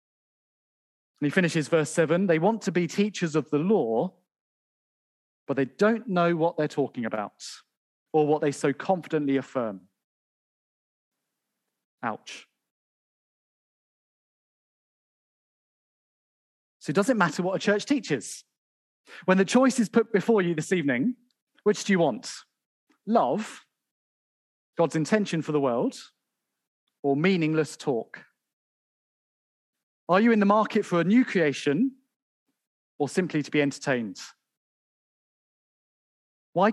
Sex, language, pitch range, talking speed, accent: male, English, 145-205 Hz, 120 wpm, British